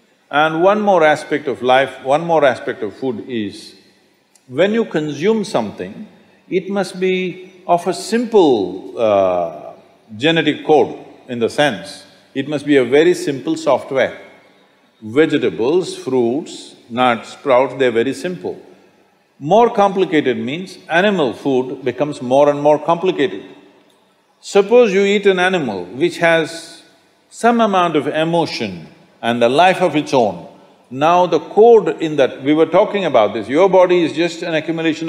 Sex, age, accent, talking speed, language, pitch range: male, 50-69, Indian, 145 wpm, English, 145-200 Hz